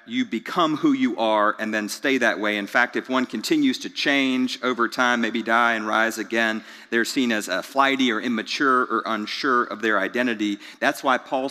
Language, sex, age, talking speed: English, male, 40-59, 205 wpm